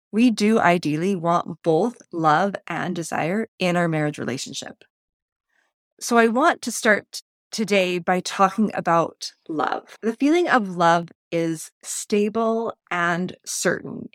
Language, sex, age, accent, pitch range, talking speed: English, female, 30-49, American, 170-230 Hz, 125 wpm